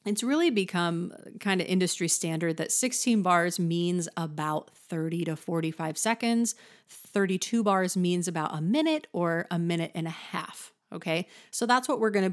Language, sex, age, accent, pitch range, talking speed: English, female, 30-49, American, 165-215 Hz, 165 wpm